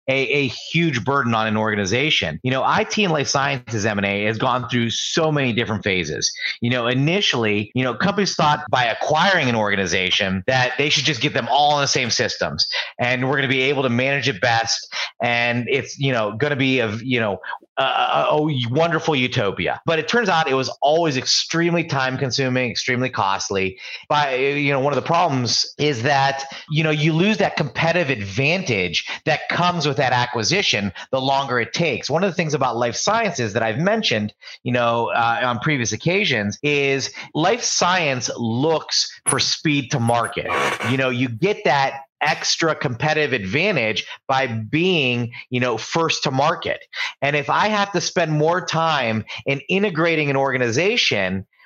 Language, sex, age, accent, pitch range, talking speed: English, male, 30-49, American, 120-160 Hz, 180 wpm